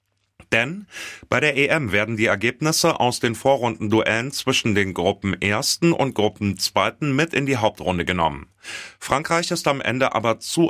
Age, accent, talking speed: 30-49, German, 150 wpm